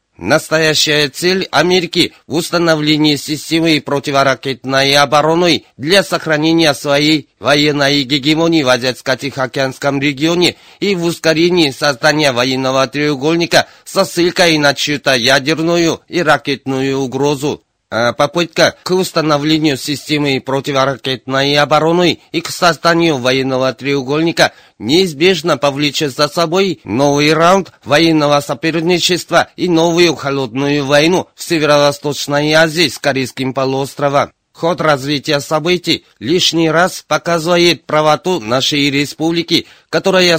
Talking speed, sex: 105 wpm, male